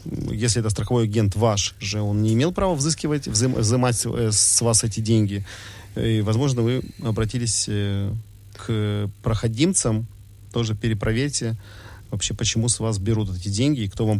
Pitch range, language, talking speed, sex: 100-120 Hz, Russian, 145 wpm, male